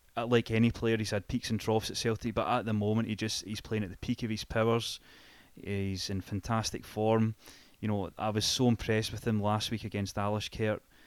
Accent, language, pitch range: British, English, 105-115 Hz